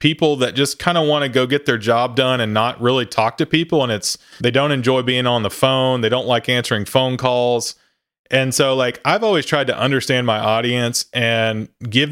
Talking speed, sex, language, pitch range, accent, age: 225 wpm, male, English, 115-135 Hz, American, 30-49